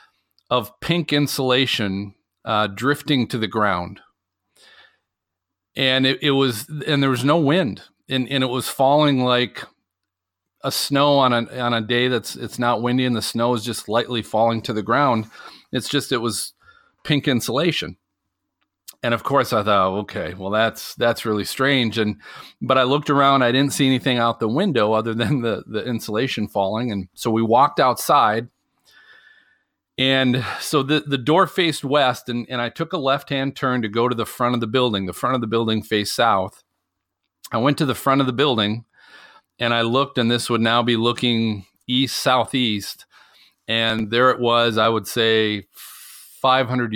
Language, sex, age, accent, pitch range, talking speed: English, male, 40-59, American, 110-130 Hz, 180 wpm